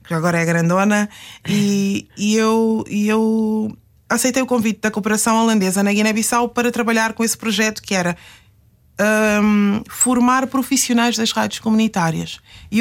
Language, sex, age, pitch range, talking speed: Portuguese, female, 20-39, 200-245 Hz, 145 wpm